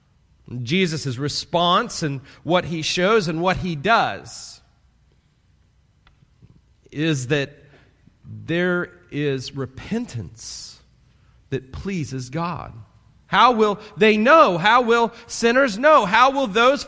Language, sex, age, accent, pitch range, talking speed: English, male, 40-59, American, 165-225 Hz, 105 wpm